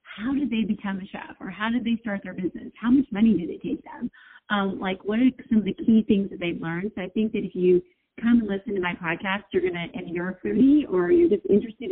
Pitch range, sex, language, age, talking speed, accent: 185-245 Hz, female, English, 30-49, 270 wpm, American